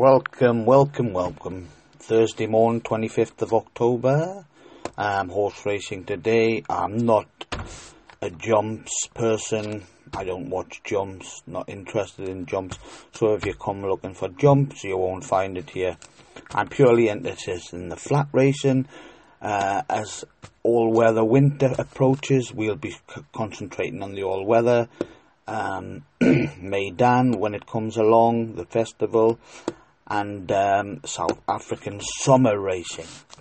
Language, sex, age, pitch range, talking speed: English, male, 30-49, 100-125 Hz, 135 wpm